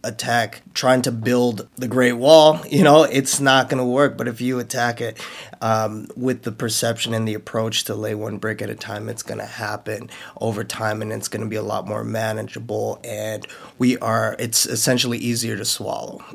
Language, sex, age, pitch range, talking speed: English, male, 20-39, 110-125 Hz, 205 wpm